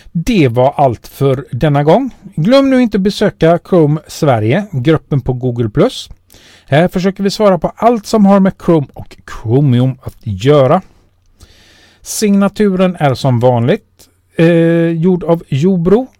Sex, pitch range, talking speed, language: male, 120-185 Hz, 135 wpm, Swedish